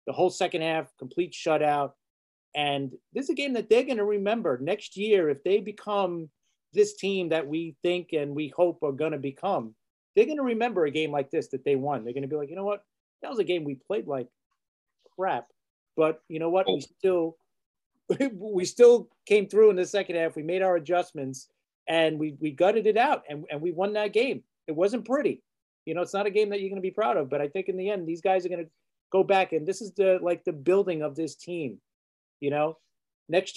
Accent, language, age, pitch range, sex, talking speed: American, English, 40-59, 140-195 Hz, male, 235 wpm